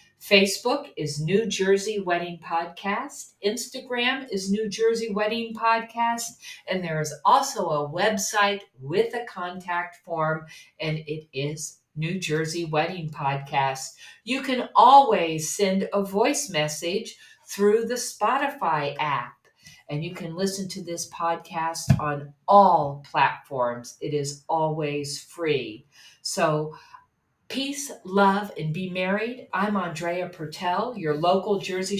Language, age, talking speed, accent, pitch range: English, 50-69, 125 wpm, American, 150-210 Hz